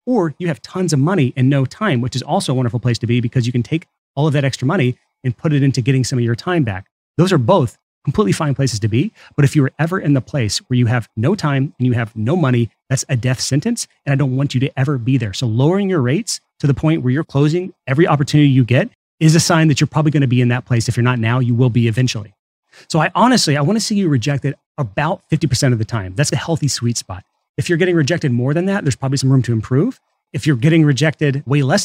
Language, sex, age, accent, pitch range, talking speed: English, male, 30-49, American, 125-155 Hz, 275 wpm